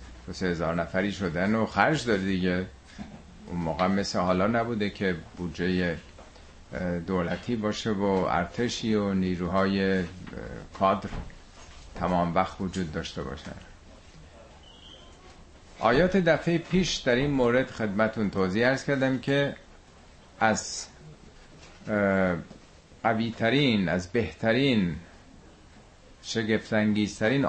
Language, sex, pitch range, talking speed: Persian, male, 85-110 Hz, 95 wpm